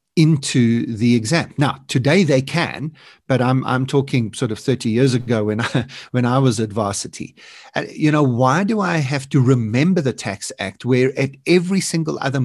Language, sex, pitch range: English, male, 120-150 Hz